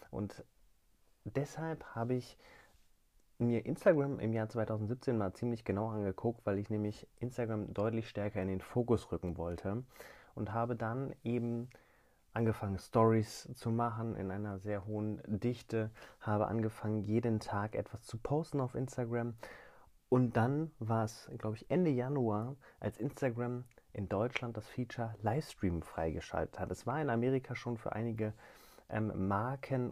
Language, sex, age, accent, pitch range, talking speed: German, male, 30-49, German, 100-120 Hz, 140 wpm